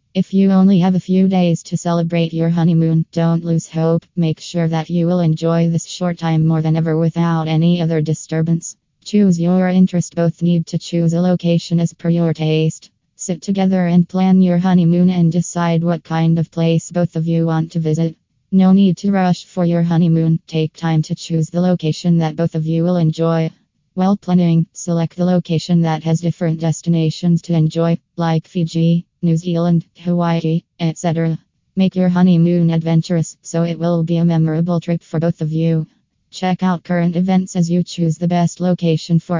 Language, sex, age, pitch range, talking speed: English, female, 20-39, 165-175 Hz, 185 wpm